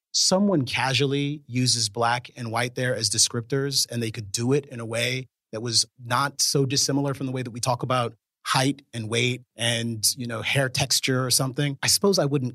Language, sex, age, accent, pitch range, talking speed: English, male, 30-49, American, 115-135 Hz, 205 wpm